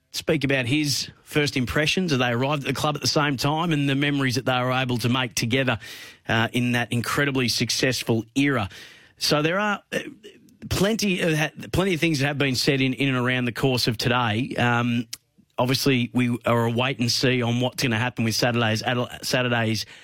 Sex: male